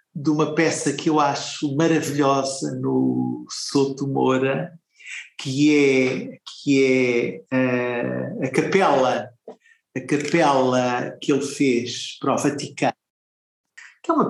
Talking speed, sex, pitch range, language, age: 120 wpm, male, 145-195 Hz, Portuguese, 50-69